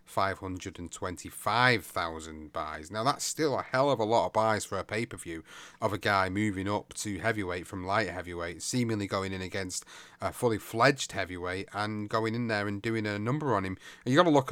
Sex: male